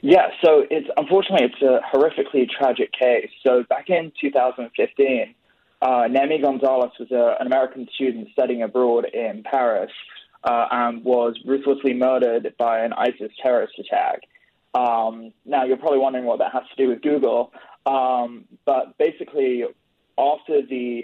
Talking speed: 150 wpm